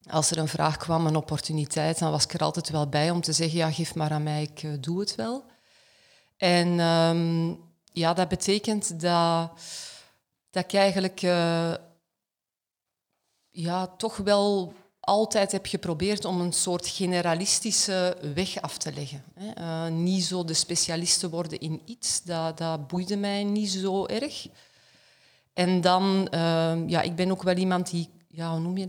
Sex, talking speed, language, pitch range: female, 165 wpm, Dutch, 160-185 Hz